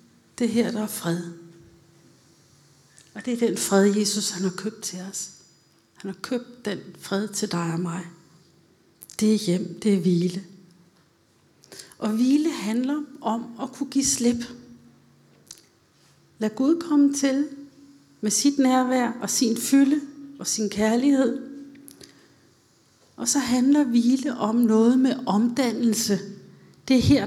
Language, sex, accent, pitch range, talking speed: Danish, female, native, 180-250 Hz, 135 wpm